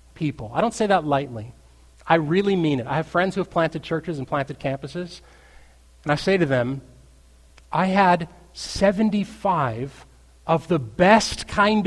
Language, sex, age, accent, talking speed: English, male, 30-49, American, 160 wpm